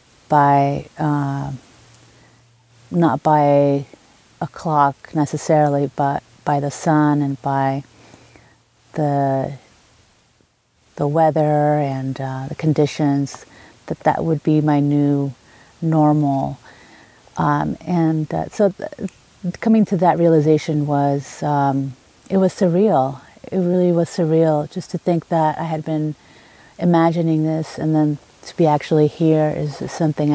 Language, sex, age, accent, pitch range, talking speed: English, female, 30-49, American, 145-175 Hz, 125 wpm